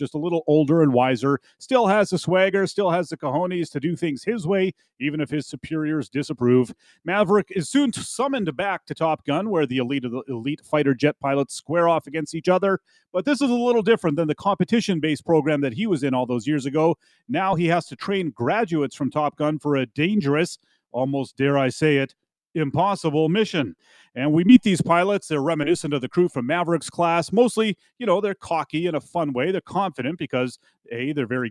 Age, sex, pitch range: 30-49, male, 135-180 Hz